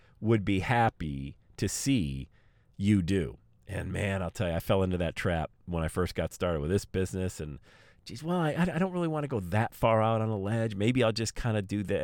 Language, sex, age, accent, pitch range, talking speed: English, male, 40-59, American, 90-115 Hz, 240 wpm